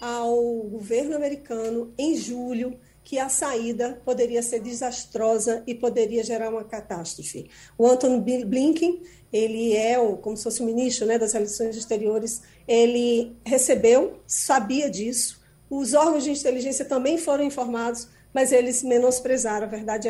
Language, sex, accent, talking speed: Portuguese, female, Brazilian, 140 wpm